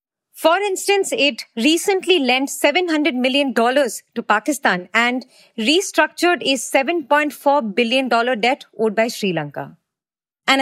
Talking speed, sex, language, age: 115 wpm, female, English, 30-49